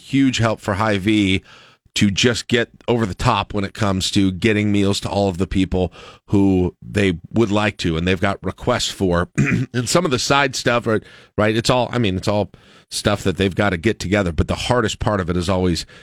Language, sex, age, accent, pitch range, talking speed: English, male, 40-59, American, 90-115 Hz, 225 wpm